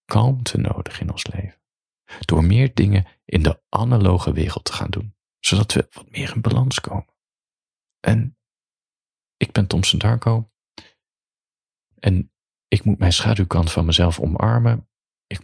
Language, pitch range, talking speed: Dutch, 85-115 Hz, 140 wpm